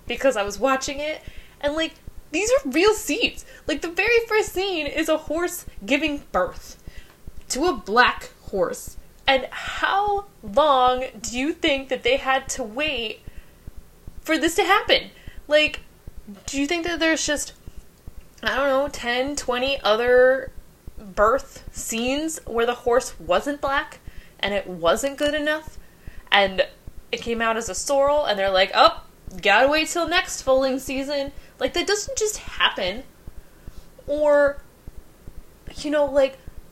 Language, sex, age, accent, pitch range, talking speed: English, female, 20-39, American, 250-320 Hz, 150 wpm